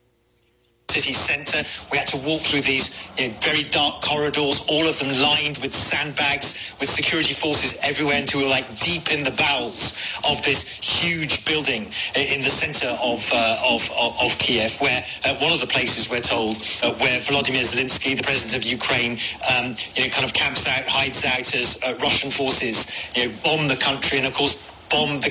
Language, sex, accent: English, male, British